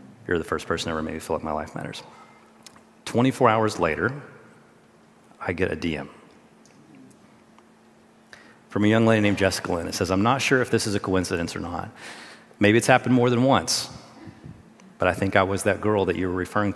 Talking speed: 195 wpm